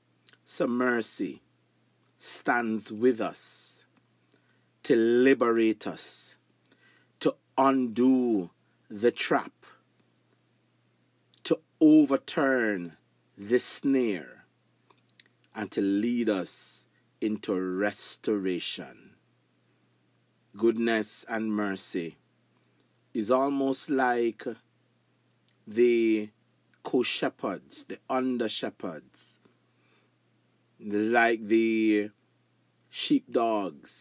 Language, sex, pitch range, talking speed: English, male, 100-125 Hz, 60 wpm